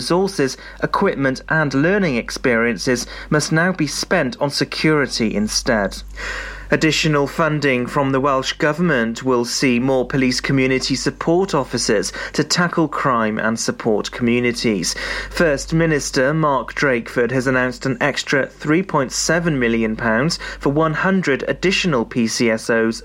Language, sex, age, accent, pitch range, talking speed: English, male, 30-49, British, 125-160 Hz, 115 wpm